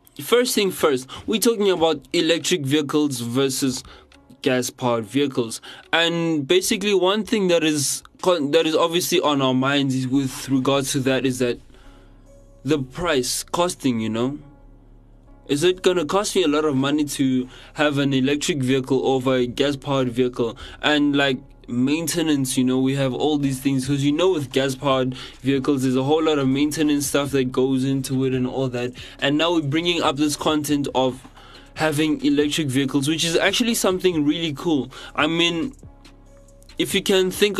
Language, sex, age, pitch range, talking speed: English, male, 20-39, 130-155 Hz, 170 wpm